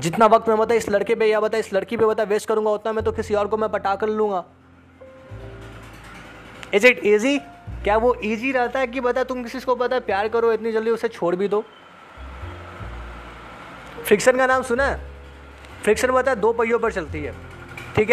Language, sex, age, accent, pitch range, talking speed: Hindi, male, 20-39, native, 170-235 Hz, 190 wpm